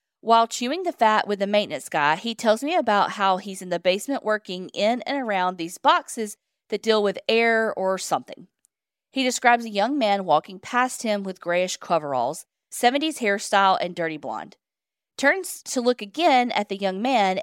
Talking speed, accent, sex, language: 185 wpm, American, female, English